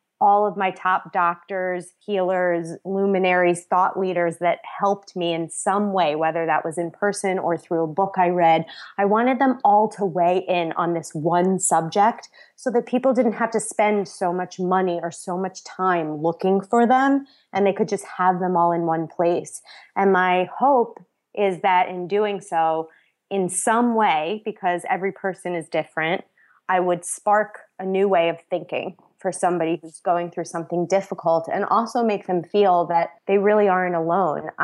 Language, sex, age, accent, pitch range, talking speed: English, female, 20-39, American, 170-195 Hz, 180 wpm